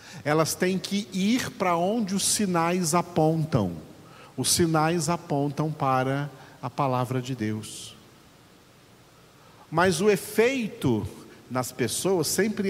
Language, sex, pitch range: Portuguese, male, 125-175 Hz